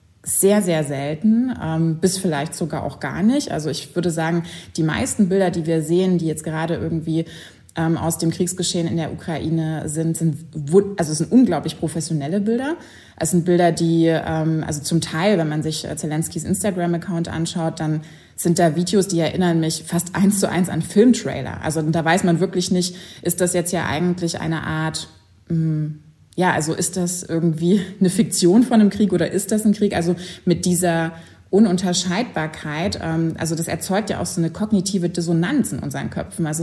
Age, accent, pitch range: 20-39, German, 160-195 Hz